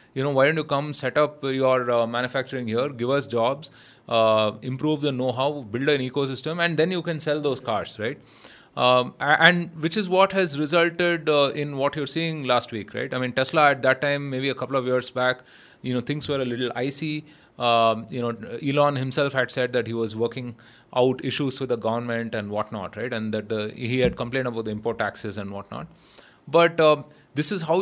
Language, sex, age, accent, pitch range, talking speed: English, male, 30-49, Indian, 120-150 Hz, 215 wpm